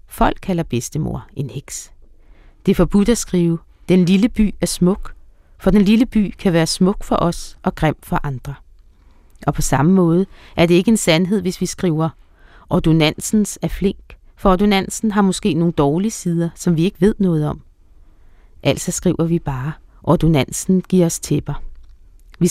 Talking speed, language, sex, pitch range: 175 wpm, Danish, female, 155-195 Hz